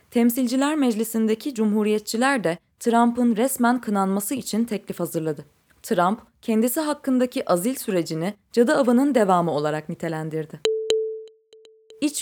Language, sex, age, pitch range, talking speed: Turkish, female, 20-39, 175-250 Hz, 105 wpm